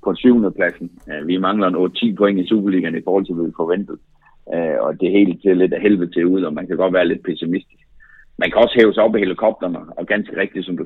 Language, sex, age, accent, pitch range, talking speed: Danish, male, 60-79, native, 95-115 Hz, 250 wpm